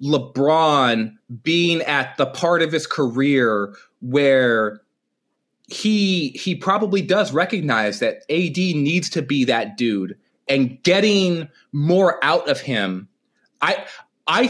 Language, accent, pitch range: English, American, 135-190 Hz